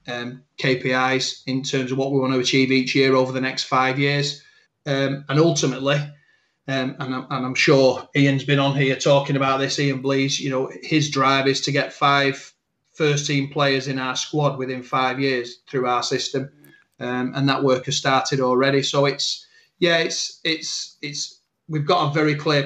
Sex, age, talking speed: male, 30-49, 195 wpm